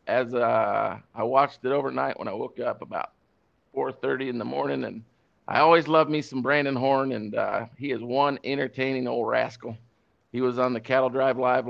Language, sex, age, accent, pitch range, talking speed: English, male, 50-69, American, 120-145 Hz, 200 wpm